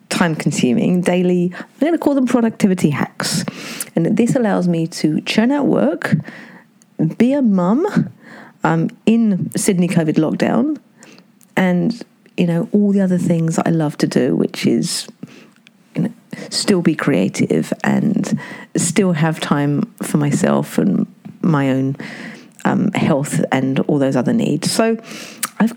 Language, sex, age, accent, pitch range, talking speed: English, female, 40-59, British, 170-225 Hz, 140 wpm